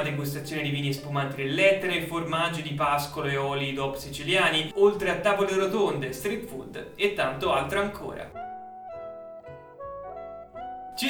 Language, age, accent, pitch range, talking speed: Italian, 30-49, native, 150-200 Hz, 125 wpm